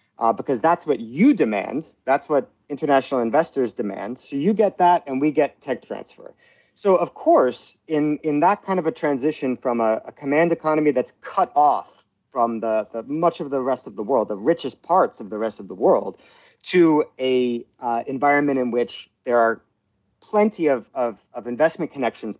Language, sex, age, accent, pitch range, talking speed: English, male, 40-59, American, 115-150 Hz, 190 wpm